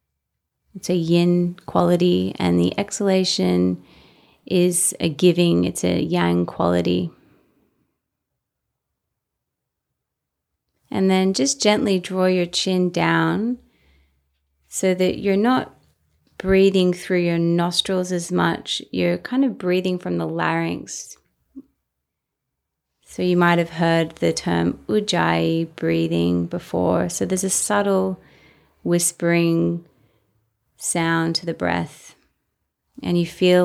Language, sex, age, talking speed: English, female, 30-49, 105 wpm